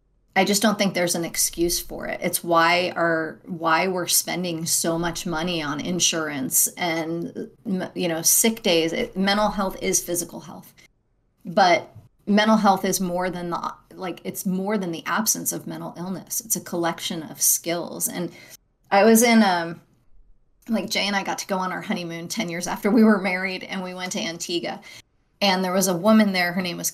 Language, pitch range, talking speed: English, 170-200 Hz, 195 wpm